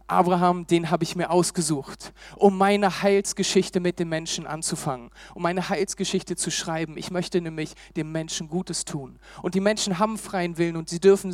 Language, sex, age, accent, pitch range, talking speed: German, male, 40-59, German, 150-190 Hz, 180 wpm